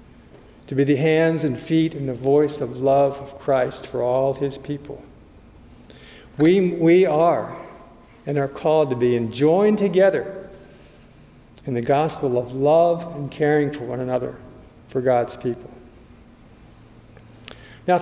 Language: English